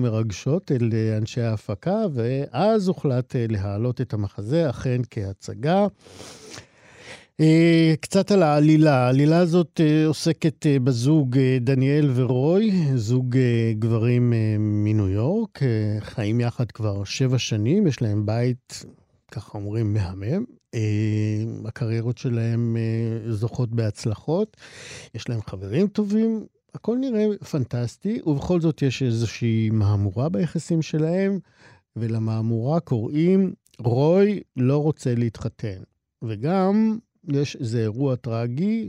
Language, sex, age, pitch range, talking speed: Hebrew, male, 50-69, 115-160 Hz, 100 wpm